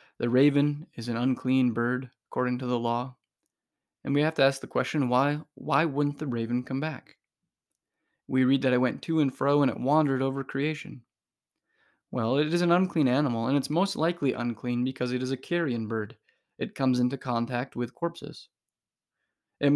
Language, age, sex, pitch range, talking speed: English, 20-39, male, 120-145 Hz, 185 wpm